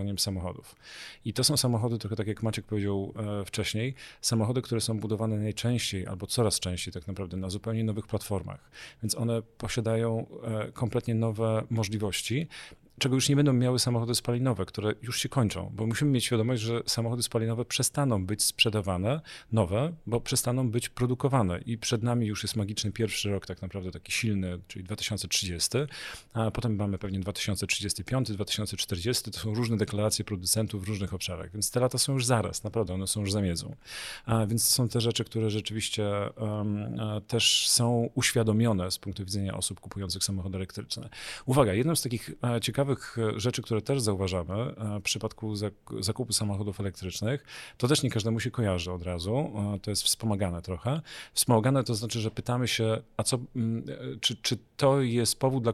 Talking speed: 165 wpm